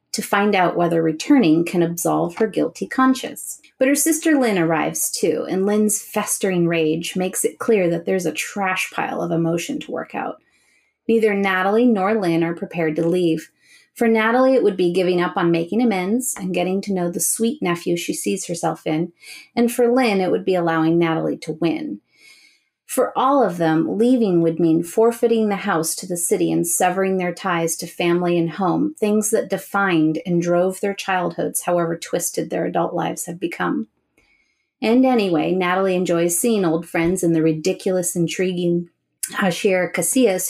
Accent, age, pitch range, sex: American, 30-49, 170-220 Hz, female